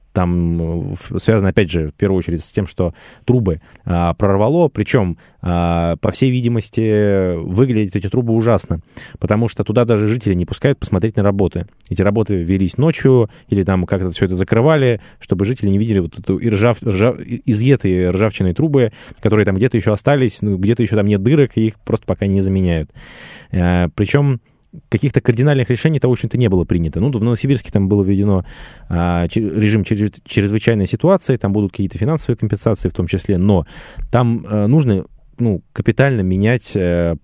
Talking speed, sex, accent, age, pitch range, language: 170 wpm, male, native, 20-39, 95-120 Hz, Russian